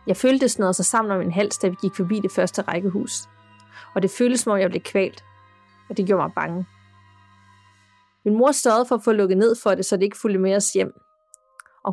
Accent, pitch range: native, 195-260 Hz